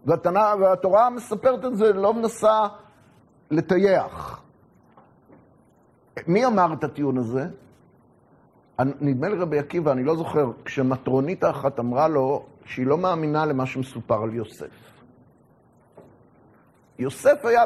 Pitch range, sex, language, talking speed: 140-205 Hz, male, Hebrew, 115 wpm